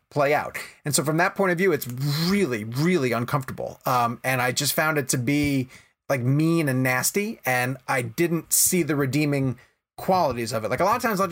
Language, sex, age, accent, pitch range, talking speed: English, male, 30-49, American, 135-180 Hz, 210 wpm